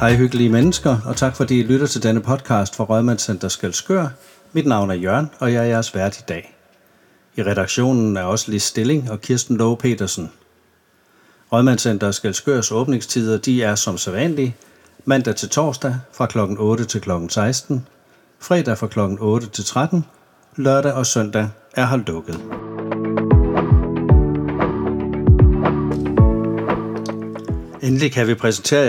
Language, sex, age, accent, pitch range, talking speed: Danish, male, 60-79, native, 105-130 Hz, 140 wpm